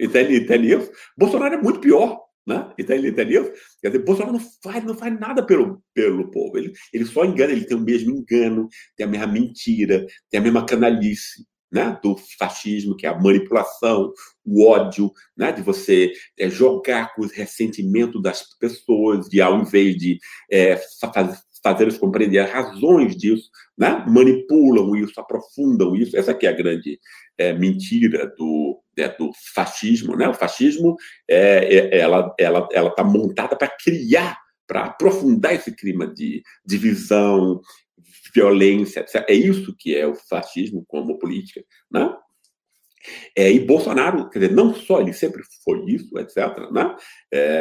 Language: Portuguese